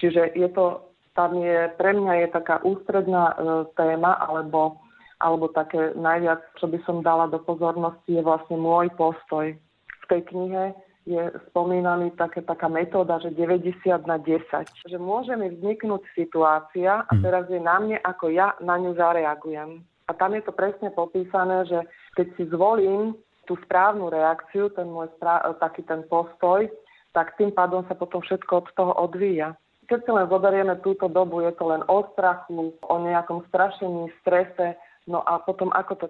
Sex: female